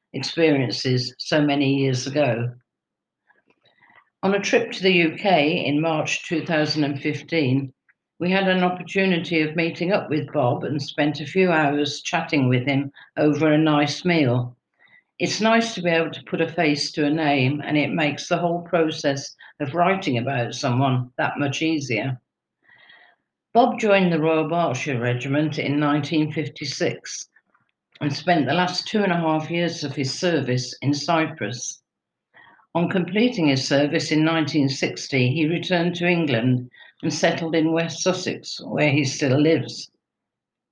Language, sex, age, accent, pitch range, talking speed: English, female, 50-69, British, 140-170 Hz, 150 wpm